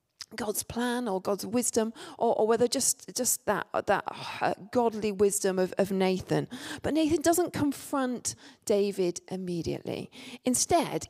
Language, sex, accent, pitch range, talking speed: English, female, British, 195-255 Hz, 130 wpm